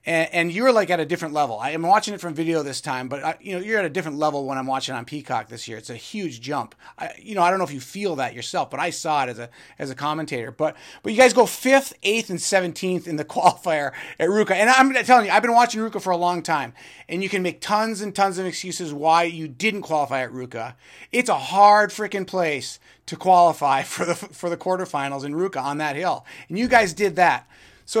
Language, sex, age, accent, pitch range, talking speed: English, male, 30-49, American, 160-215 Hz, 255 wpm